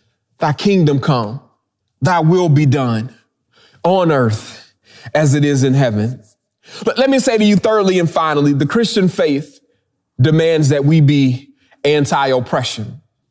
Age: 30-49